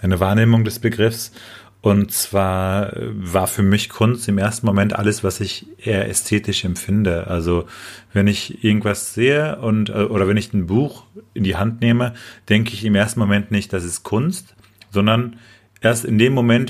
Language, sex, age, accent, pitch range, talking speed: German, male, 40-59, German, 95-115 Hz, 175 wpm